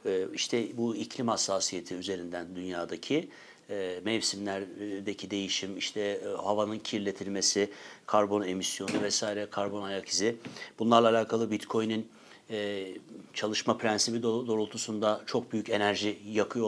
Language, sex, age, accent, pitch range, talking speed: Turkish, male, 60-79, native, 105-125 Hz, 95 wpm